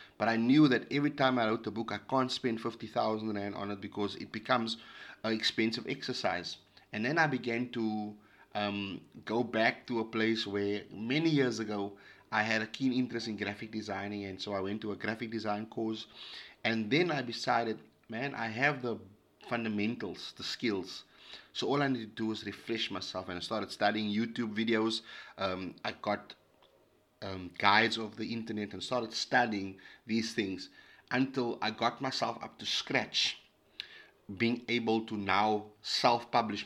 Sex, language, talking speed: male, English, 170 wpm